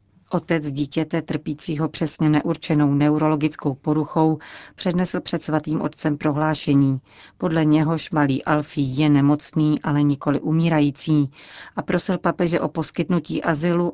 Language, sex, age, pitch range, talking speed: Czech, female, 40-59, 145-160 Hz, 115 wpm